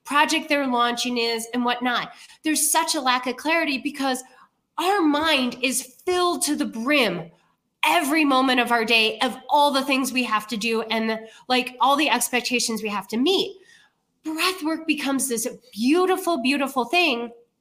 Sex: female